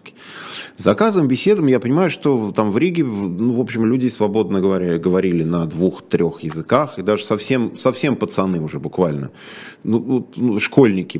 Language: Russian